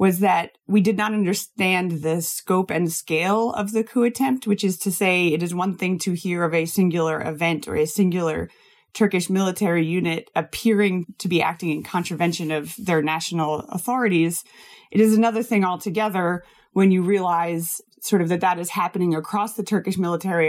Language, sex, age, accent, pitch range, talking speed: English, female, 30-49, American, 165-200 Hz, 180 wpm